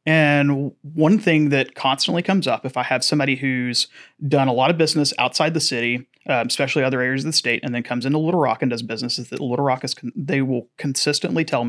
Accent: American